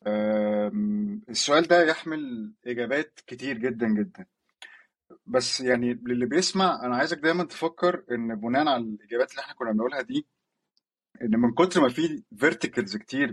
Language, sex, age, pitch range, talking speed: Arabic, male, 20-39, 125-190 Hz, 140 wpm